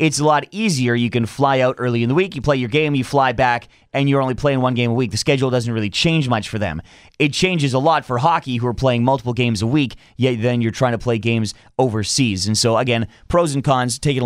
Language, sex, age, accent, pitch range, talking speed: English, male, 30-49, American, 115-145 Hz, 265 wpm